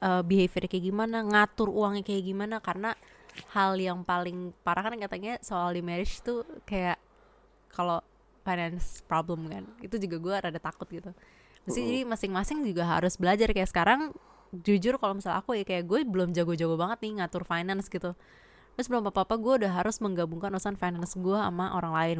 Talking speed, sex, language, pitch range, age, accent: 175 wpm, female, Indonesian, 175-225 Hz, 20-39, native